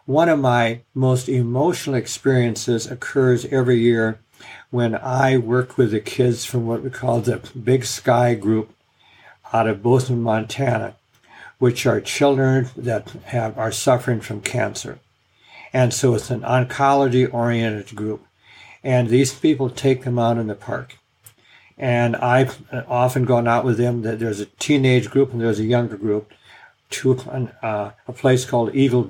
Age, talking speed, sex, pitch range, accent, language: 60-79, 155 wpm, male, 115-130 Hz, American, English